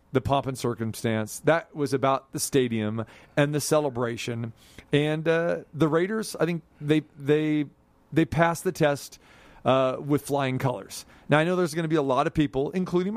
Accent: American